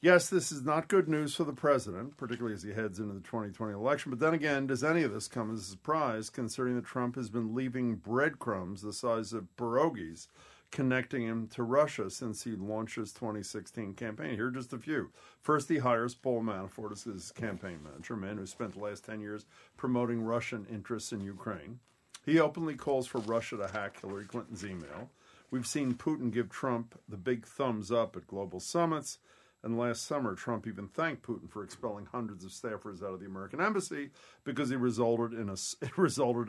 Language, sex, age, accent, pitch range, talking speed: English, male, 50-69, American, 110-135 Hz, 200 wpm